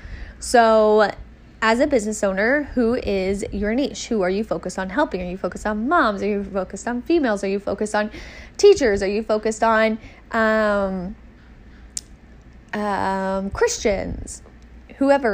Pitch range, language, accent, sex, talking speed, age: 190-230 Hz, English, American, female, 150 wpm, 10-29